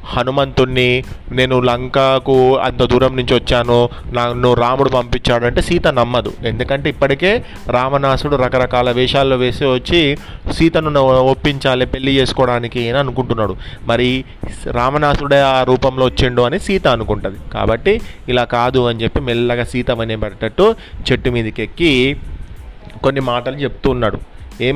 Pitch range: 115-135 Hz